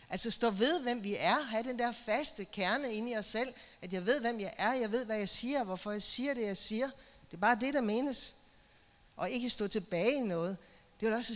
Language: Danish